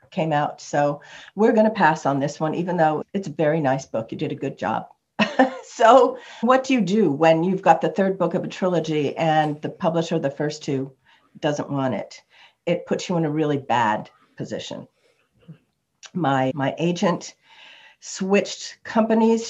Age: 50-69